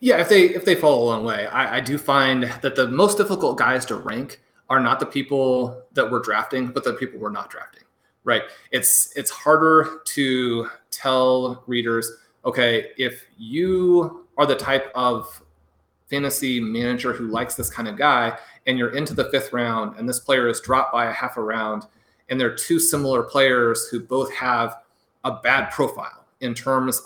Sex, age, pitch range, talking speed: male, 30-49, 120-145 Hz, 190 wpm